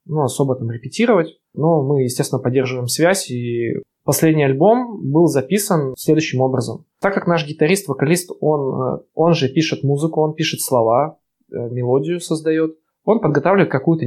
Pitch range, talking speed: 130-165 Hz, 150 wpm